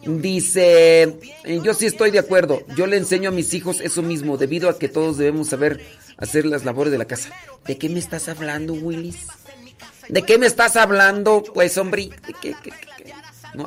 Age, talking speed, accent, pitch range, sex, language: 40-59, 180 wpm, Mexican, 150-185 Hz, male, Spanish